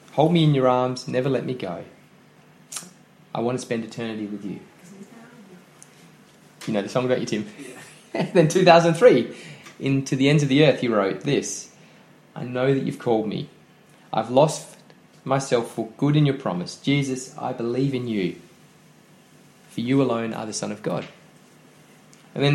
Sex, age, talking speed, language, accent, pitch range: male, 20-39, 170 wpm, English, Australian, 120-155 Hz